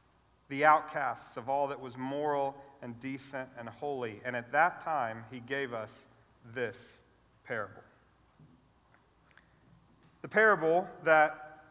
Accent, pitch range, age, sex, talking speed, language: American, 135-170 Hz, 40-59, male, 120 wpm, English